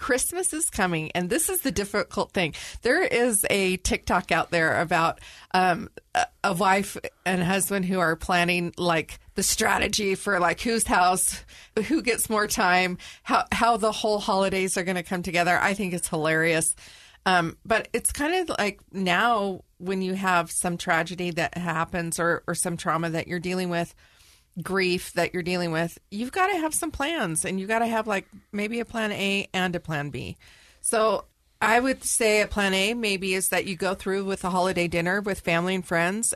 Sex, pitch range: female, 175-210 Hz